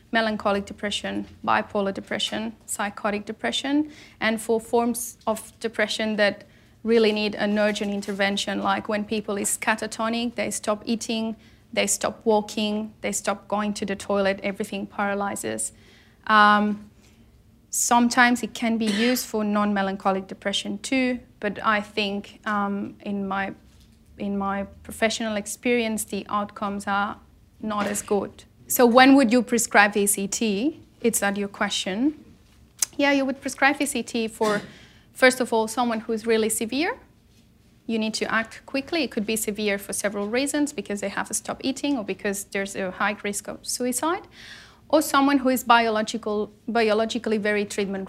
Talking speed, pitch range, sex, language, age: 150 wpm, 205-235 Hz, female, English, 30-49